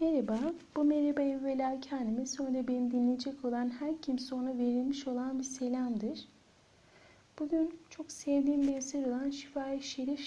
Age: 30-49